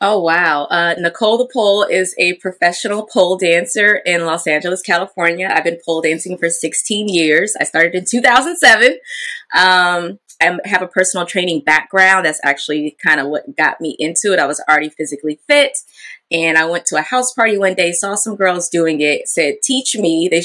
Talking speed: 190 wpm